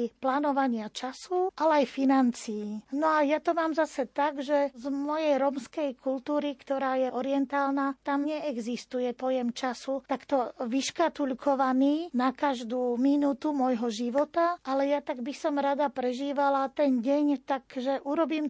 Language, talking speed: Slovak, 135 wpm